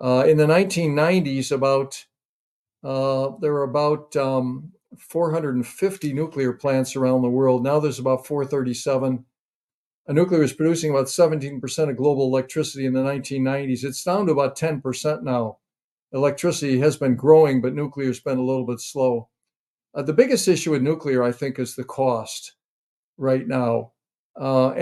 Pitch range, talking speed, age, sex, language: 130-150 Hz, 155 wpm, 50-69, male, English